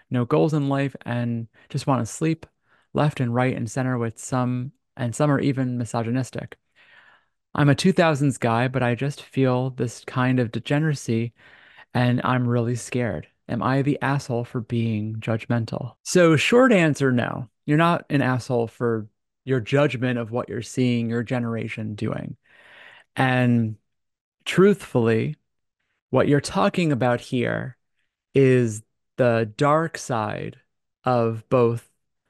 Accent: American